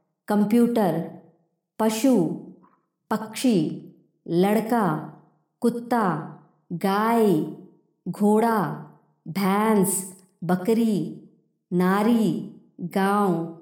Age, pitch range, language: 50-69, 175-240 Hz, Hindi